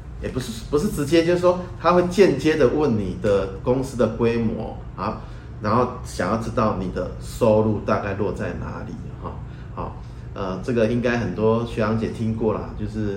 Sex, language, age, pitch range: male, Chinese, 30-49, 100-120 Hz